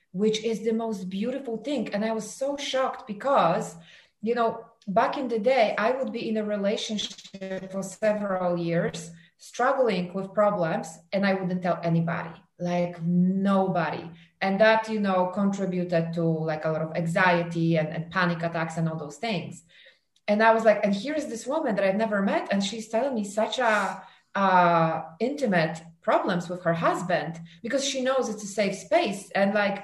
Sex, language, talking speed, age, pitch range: female, English, 180 wpm, 30-49, 170-220 Hz